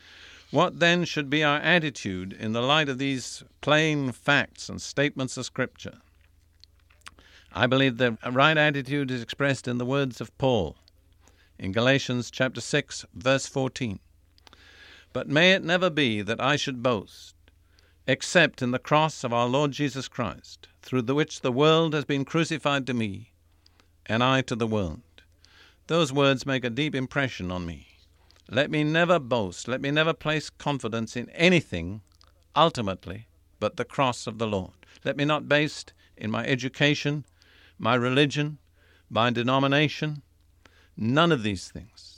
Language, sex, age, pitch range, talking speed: English, male, 50-69, 90-145 Hz, 155 wpm